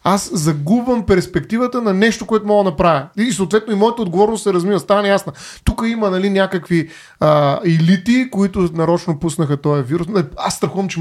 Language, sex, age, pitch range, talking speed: Bulgarian, male, 30-49, 165-210 Hz, 175 wpm